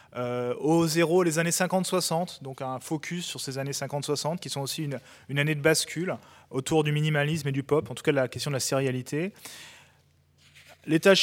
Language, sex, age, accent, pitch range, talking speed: French, male, 20-39, French, 125-170 Hz, 190 wpm